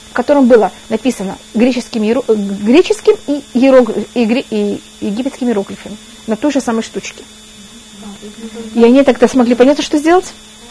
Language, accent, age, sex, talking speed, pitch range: Russian, native, 30-49, female, 110 wpm, 210-265 Hz